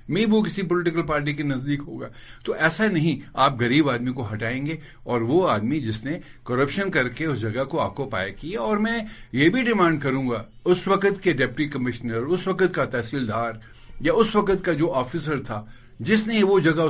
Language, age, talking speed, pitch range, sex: Urdu, 60-79, 205 wpm, 115-170 Hz, male